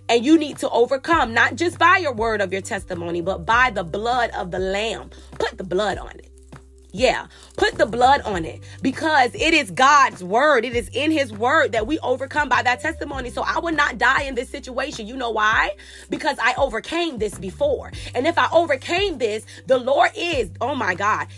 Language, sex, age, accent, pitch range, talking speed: English, female, 20-39, American, 230-320 Hz, 210 wpm